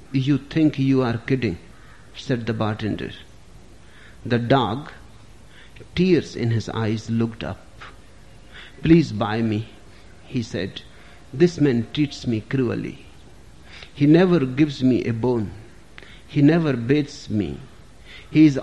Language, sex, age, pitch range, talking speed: English, male, 60-79, 105-150 Hz, 120 wpm